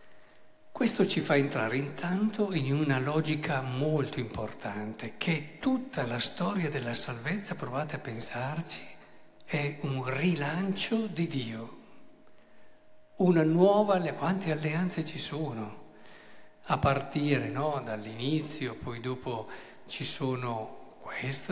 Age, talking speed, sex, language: 50-69, 105 wpm, male, Italian